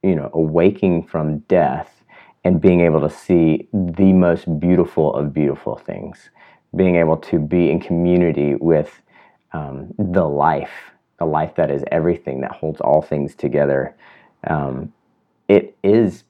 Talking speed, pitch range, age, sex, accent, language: 145 wpm, 80-120 Hz, 30-49, male, American, English